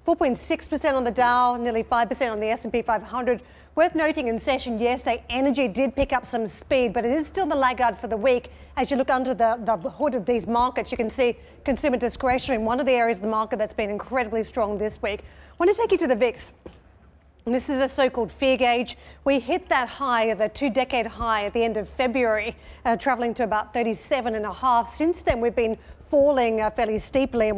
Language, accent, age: English, Australian, 40-59